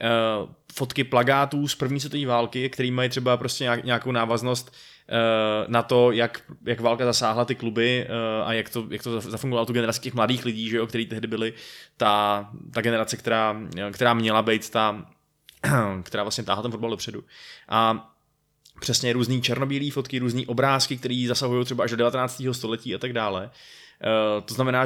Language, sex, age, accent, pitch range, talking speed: Czech, male, 20-39, native, 110-125 Hz, 180 wpm